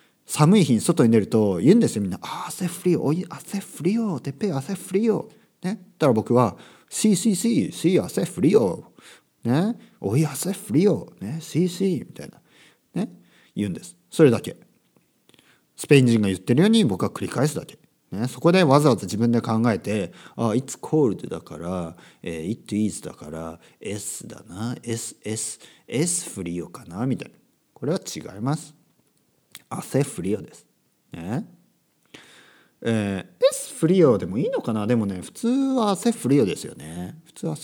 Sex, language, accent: male, Japanese, native